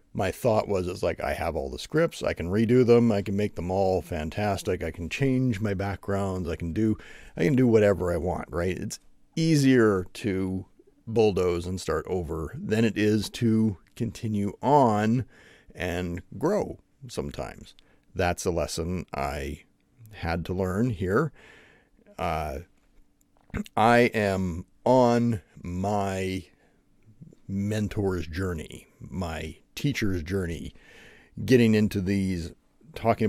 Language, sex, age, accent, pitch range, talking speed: English, male, 40-59, American, 90-110 Hz, 130 wpm